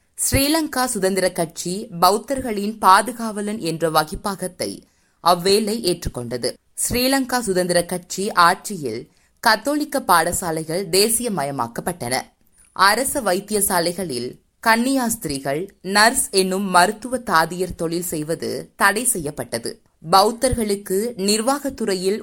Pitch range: 180-230 Hz